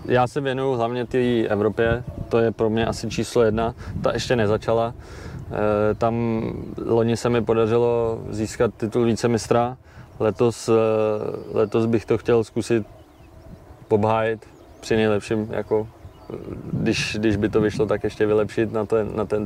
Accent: native